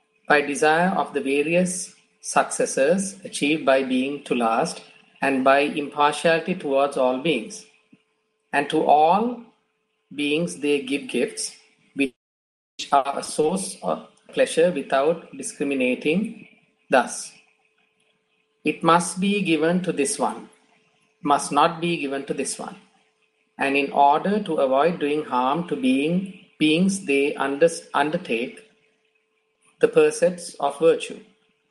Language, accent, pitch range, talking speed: English, Indian, 145-215 Hz, 120 wpm